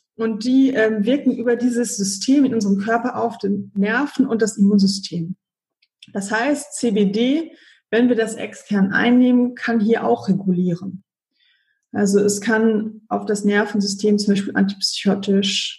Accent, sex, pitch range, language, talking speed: German, female, 195-235 Hz, German, 140 wpm